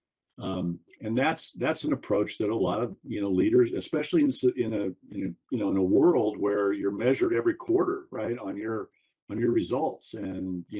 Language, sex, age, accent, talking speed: English, male, 50-69, American, 205 wpm